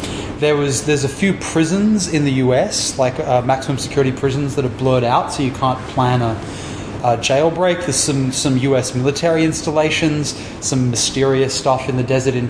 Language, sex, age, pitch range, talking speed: English, male, 20-39, 130-160 Hz, 180 wpm